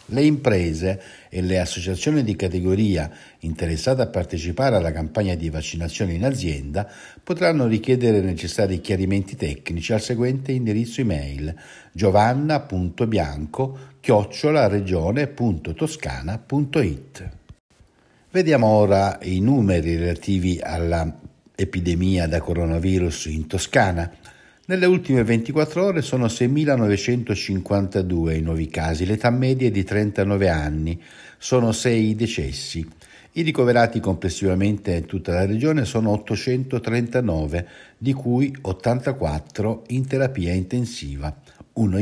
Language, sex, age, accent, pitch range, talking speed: Italian, male, 60-79, native, 85-120 Hz, 100 wpm